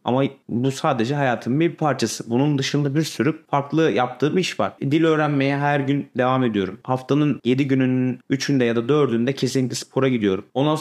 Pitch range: 125-165 Hz